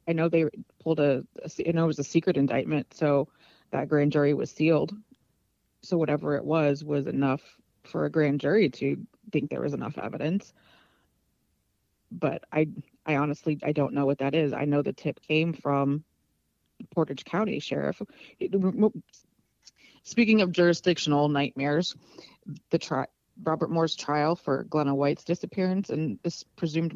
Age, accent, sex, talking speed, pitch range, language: 30-49, American, female, 155 wpm, 140-165 Hz, English